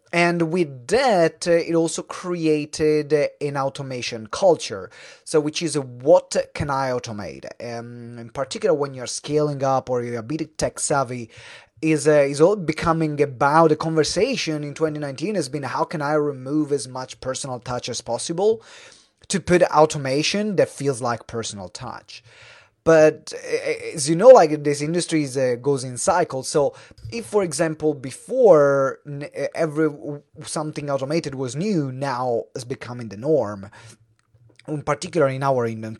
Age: 30-49